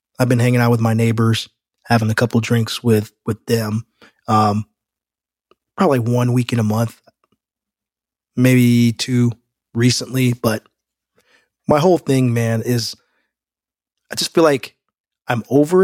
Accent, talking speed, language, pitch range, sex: American, 140 wpm, English, 115-135 Hz, male